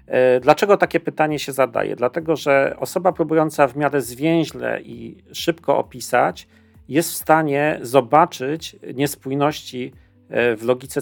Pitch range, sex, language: 125-155 Hz, male, Polish